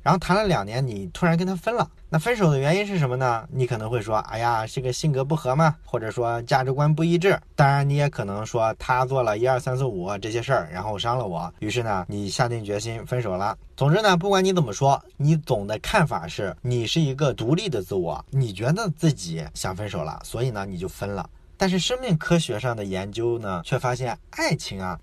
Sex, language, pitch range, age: male, Chinese, 110-160 Hz, 20-39